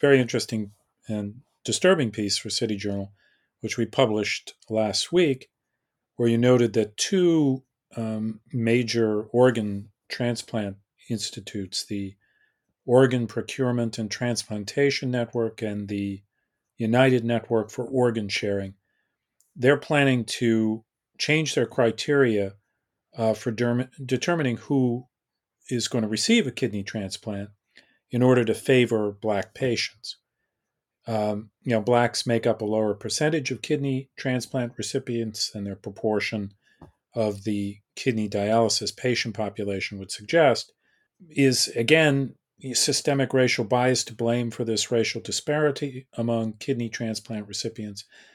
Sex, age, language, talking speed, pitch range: male, 40-59, English, 120 wpm, 105-130 Hz